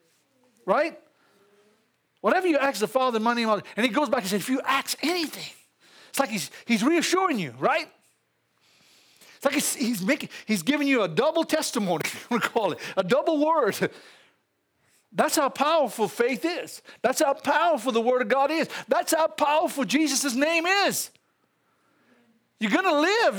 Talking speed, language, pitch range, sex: 165 wpm, English, 215-305 Hz, male